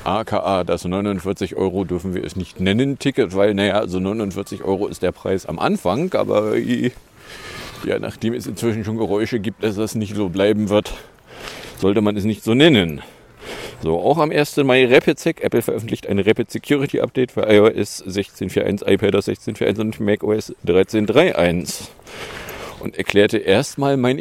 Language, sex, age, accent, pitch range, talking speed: English, male, 40-59, German, 100-125 Hz, 160 wpm